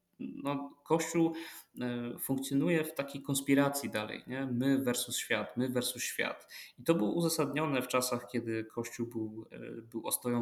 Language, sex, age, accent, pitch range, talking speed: Polish, male, 20-39, native, 115-140 Hz, 145 wpm